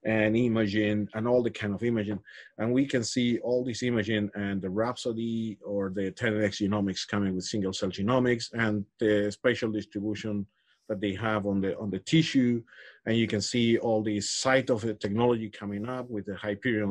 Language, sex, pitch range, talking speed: English, male, 105-125 Hz, 190 wpm